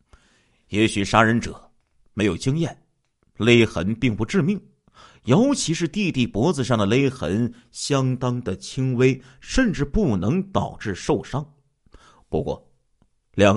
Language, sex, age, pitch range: Chinese, male, 50-69, 95-135 Hz